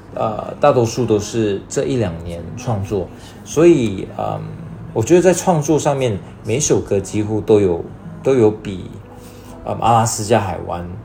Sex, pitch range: male, 95-120 Hz